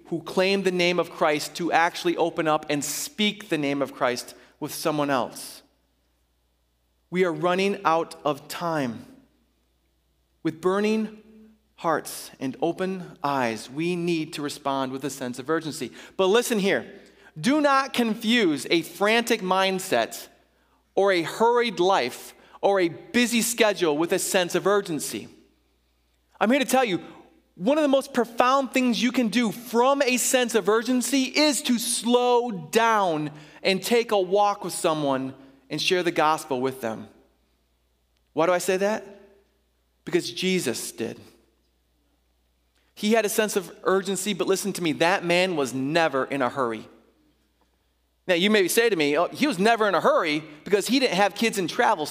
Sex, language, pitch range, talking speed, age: male, English, 140-220 Hz, 160 wpm, 30-49